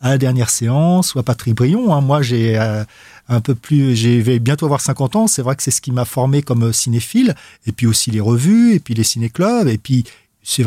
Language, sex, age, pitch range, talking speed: French, male, 40-59, 125-160 Hz, 230 wpm